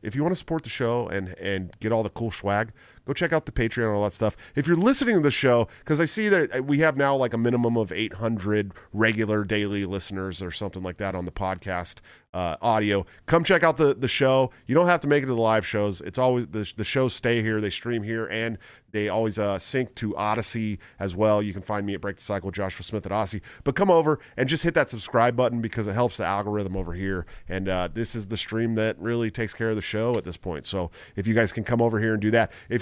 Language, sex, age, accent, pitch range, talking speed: English, male, 30-49, American, 95-120 Hz, 265 wpm